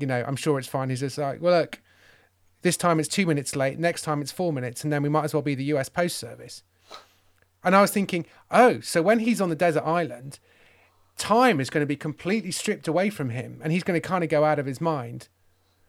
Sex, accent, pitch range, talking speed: male, British, 135-195 Hz, 250 wpm